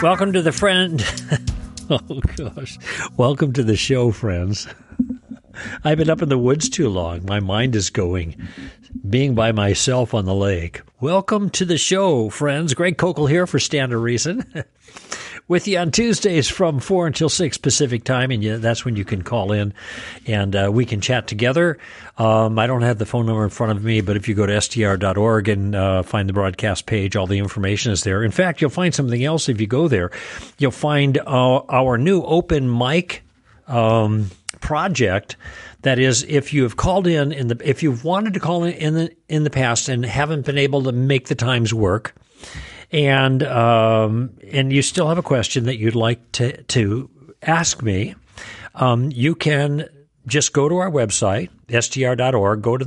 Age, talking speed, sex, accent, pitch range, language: 60-79, 190 wpm, male, American, 110-150 Hz, English